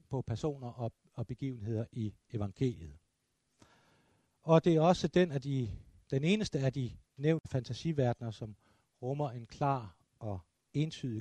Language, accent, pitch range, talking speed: Danish, native, 115-140 Hz, 130 wpm